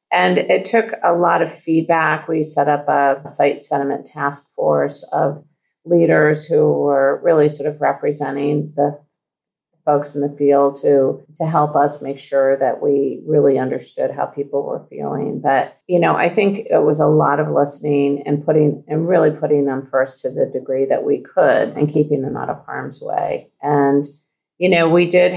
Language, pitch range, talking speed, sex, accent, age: English, 140-165 Hz, 185 wpm, female, American, 50-69